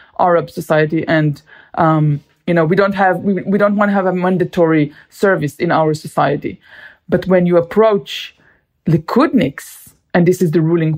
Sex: female